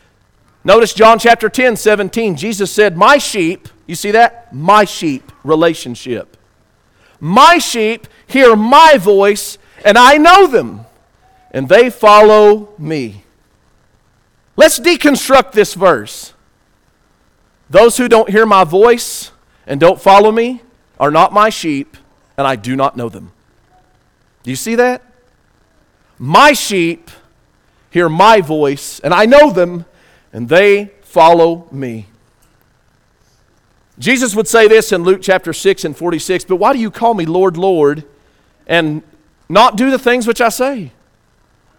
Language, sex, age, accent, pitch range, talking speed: English, male, 40-59, American, 150-230 Hz, 135 wpm